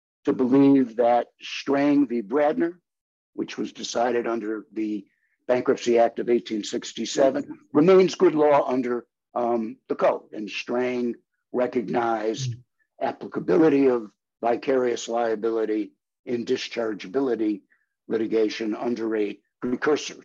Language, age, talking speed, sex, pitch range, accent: English, 60-79, 105 wpm, male, 120-150 Hz, American